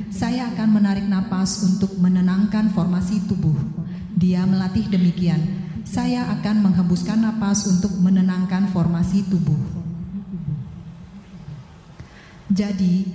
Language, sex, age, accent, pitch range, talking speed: Indonesian, female, 30-49, native, 175-195 Hz, 90 wpm